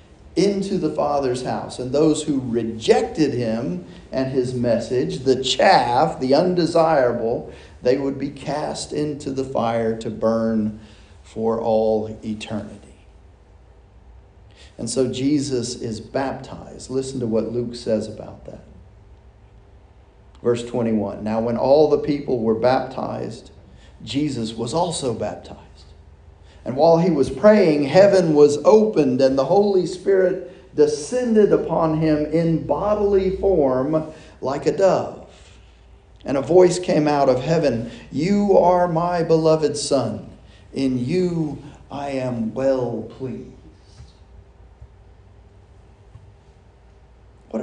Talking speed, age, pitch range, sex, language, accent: 115 wpm, 40-59, 105-155 Hz, male, English, American